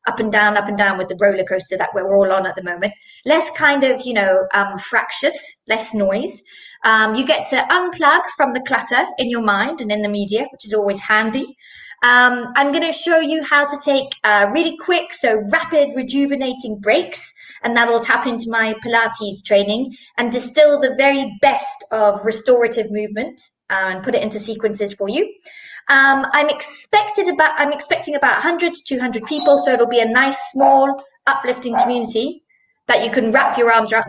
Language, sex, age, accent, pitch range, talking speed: English, female, 20-39, British, 225-320 Hz, 190 wpm